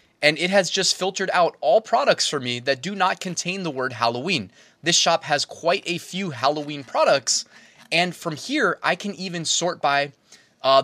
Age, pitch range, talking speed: 20-39, 150-195 Hz, 190 wpm